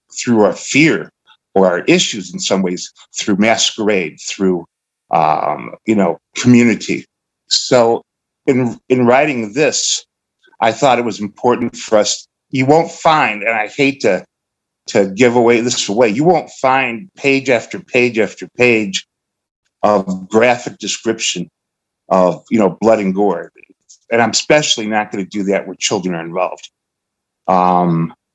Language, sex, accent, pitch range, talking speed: English, male, American, 100-125 Hz, 150 wpm